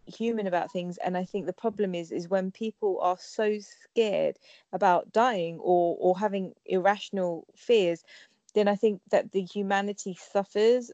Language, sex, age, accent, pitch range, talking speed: English, female, 20-39, British, 180-205 Hz, 160 wpm